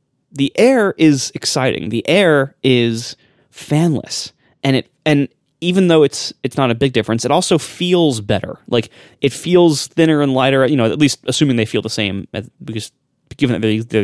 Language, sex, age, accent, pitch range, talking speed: English, male, 20-39, American, 110-145 Hz, 190 wpm